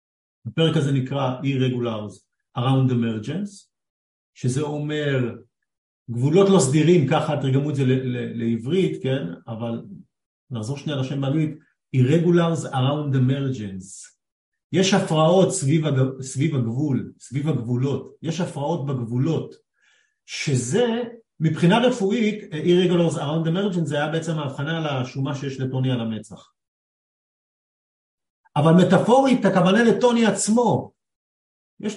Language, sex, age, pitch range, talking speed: Hebrew, male, 50-69, 125-175 Hz, 105 wpm